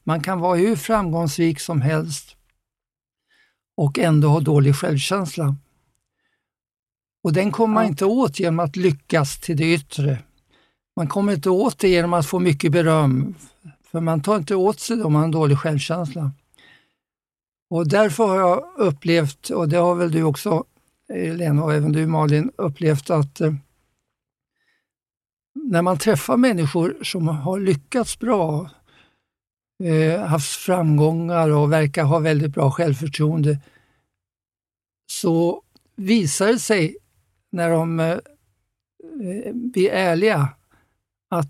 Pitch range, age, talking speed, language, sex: 150-180 Hz, 60-79, 130 wpm, English, male